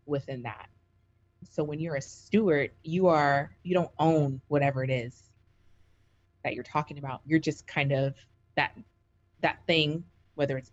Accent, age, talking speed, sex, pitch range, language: American, 30-49, 155 wpm, female, 125-160 Hz, English